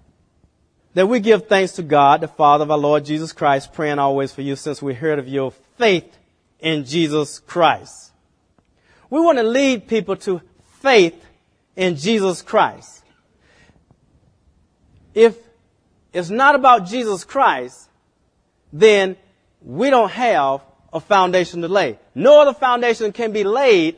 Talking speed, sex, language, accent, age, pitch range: 140 wpm, male, English, American, 40-59, 145-205 Hz